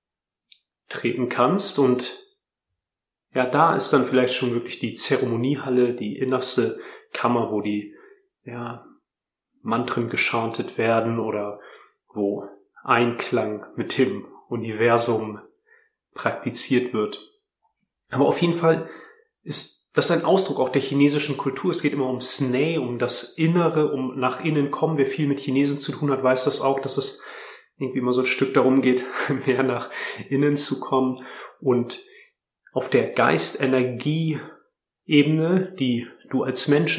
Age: 30-49